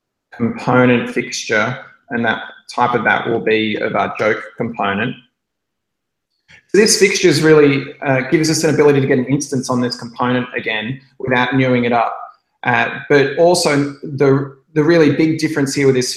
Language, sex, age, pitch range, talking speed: English, male, 20-39, 125-145 Hz, 170 wpm